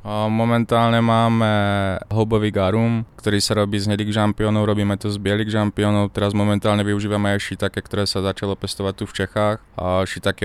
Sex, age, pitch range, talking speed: male, 20-39, 100-110 Hz, 165 wpm